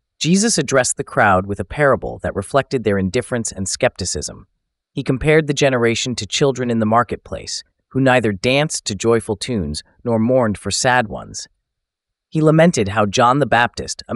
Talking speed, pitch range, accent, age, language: 170 wpm, 95-130 Hz, American, 30-49, English